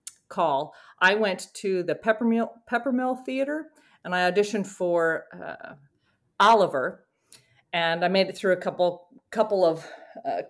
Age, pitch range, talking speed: 40-59, 165-220 Hz, 130 wpm